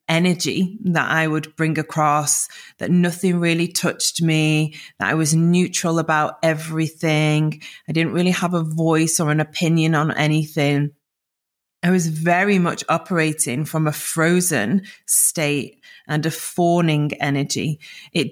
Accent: British